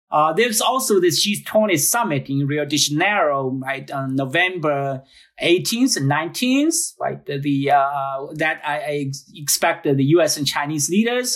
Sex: male